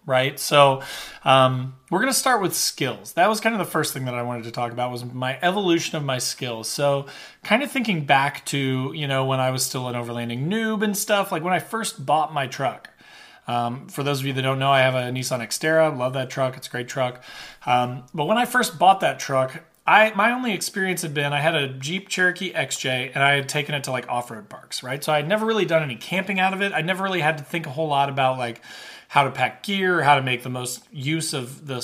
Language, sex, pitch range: English, male, 130-175 Hz